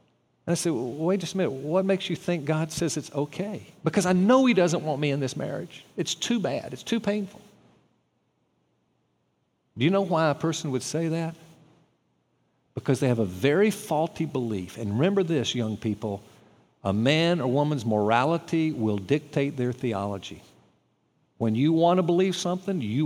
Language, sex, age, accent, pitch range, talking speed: English, male, 50-69, American, 125-185 Hz, 180 wpm